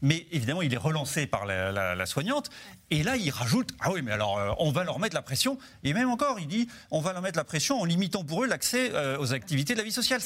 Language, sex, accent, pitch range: French, male, French, 120-175 Hz